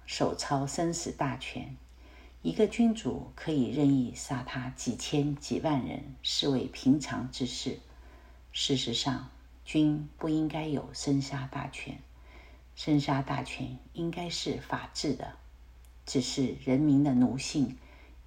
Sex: female